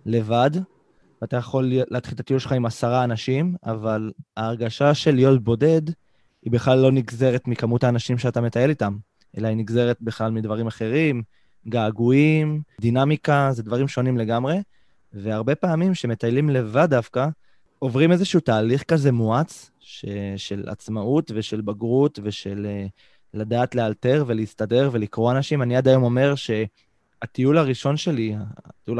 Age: 20-39